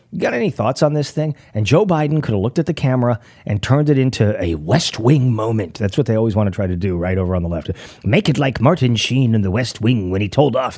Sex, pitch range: male, 105-135 Hz